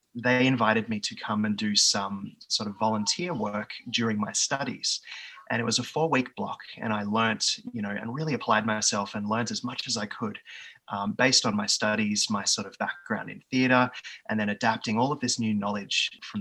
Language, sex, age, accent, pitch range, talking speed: English, male, 20-39, Australian, 105-125 Hz, 210 wpm